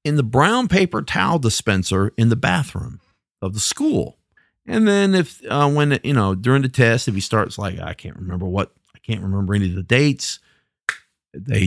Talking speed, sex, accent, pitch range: 195 wpm, male, American, 95-140 Hz